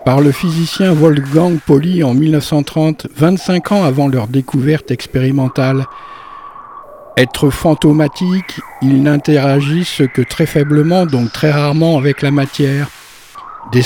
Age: 60-79